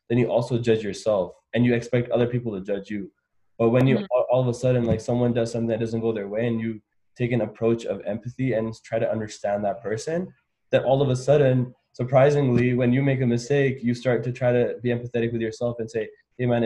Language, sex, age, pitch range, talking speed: English, male, 20-39, 105-120 Hz, 240 wpm